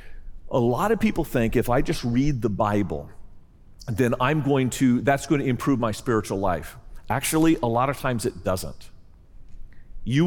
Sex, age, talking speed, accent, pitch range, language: male, 40-59, 175 wpm, American, 120-190 Hz, English